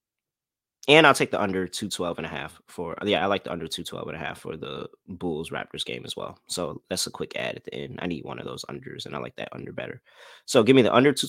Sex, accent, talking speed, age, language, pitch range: male, American, 285 wpm, 20-39, English, 90-120 Hz